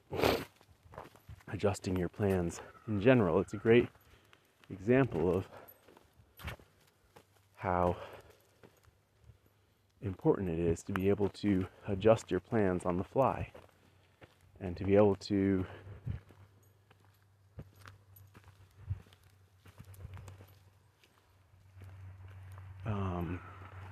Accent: American